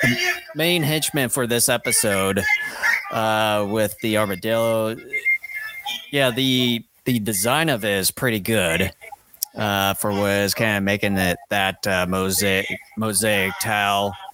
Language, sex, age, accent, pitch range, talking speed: English, male, 30-49, American, 95-125 Hz, 125 wpm